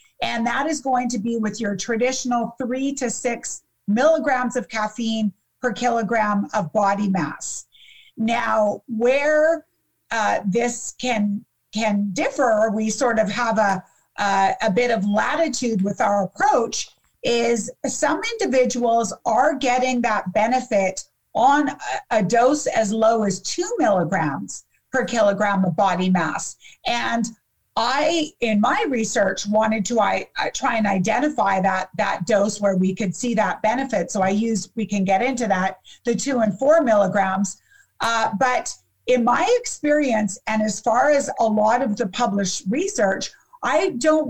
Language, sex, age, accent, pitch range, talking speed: English, female, 40-59, American, 210-265 Hz, 150 wpm